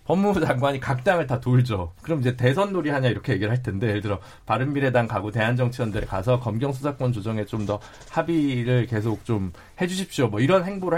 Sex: male